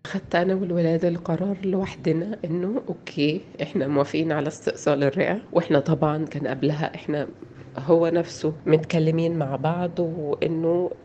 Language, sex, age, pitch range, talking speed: Arabic, female, 30-49, 150-175 Hz, 125 wpm